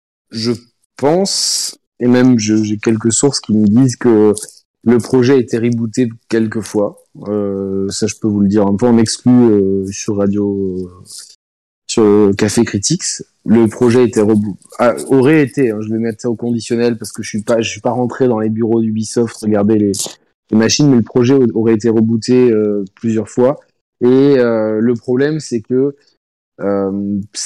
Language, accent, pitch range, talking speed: French, French, 105-125 Hz, 185 wpm